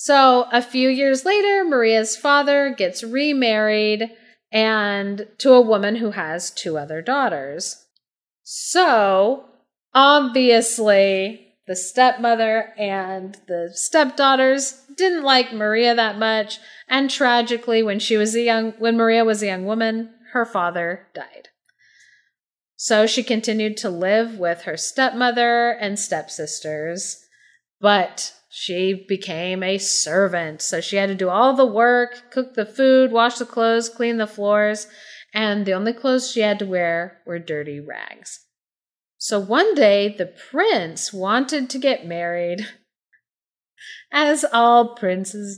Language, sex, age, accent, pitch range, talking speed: English, female, 30-49, American, 190-245 Hz, 135 wpm